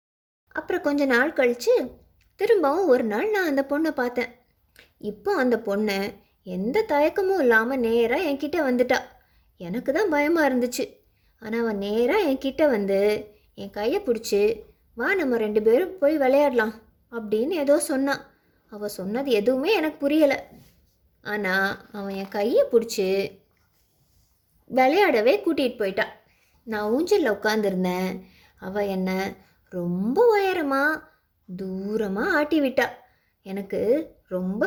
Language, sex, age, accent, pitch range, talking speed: Tamil, female, 20-39, native, 220-305 Hz, 120 wpm